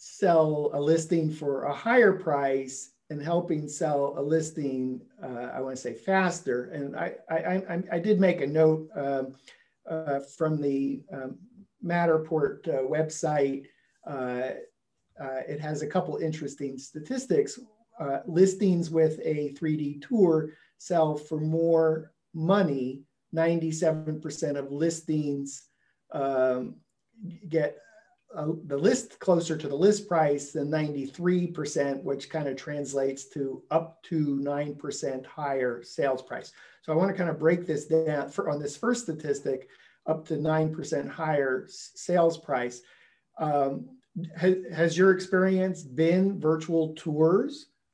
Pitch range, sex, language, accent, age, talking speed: 145-175 Hz, male, English, American, 50-69, 130 wpm